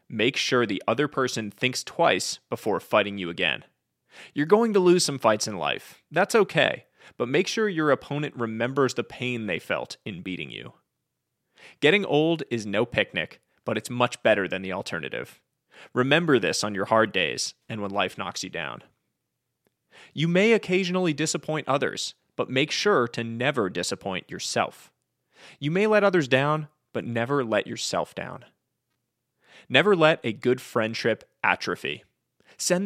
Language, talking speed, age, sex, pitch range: English, 160 wpm, 30-49, male, 115-175 Hz